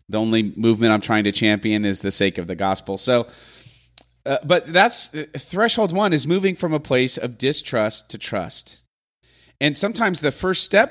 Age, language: 30-49, English